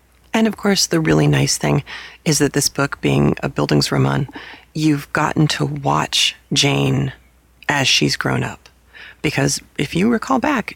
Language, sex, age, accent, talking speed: English, female, 30-49, American, 160 wpm